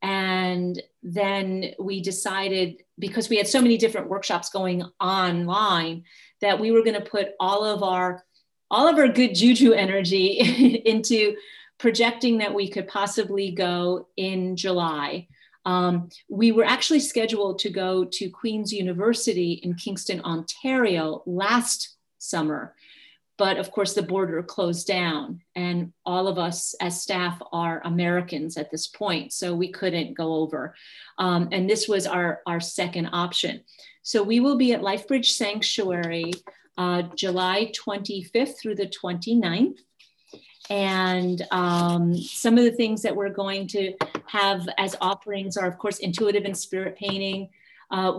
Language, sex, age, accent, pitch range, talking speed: English, female, 40-59, American, 180-210 Hz, 145 wpm